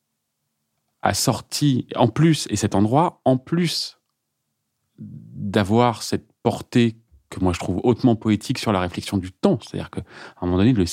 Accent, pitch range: French, 100-135 Hz